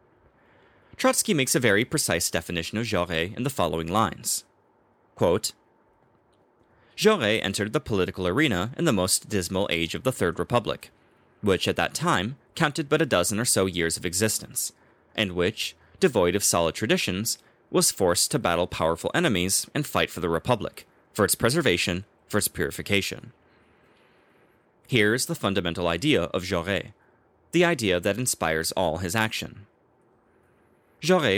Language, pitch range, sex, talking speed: English, 90-125 Hz, male, 145 wpm